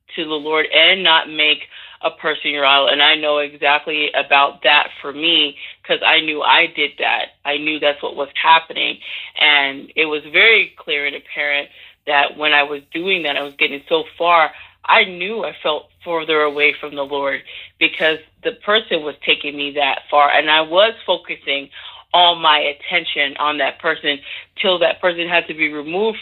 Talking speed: 190 wpm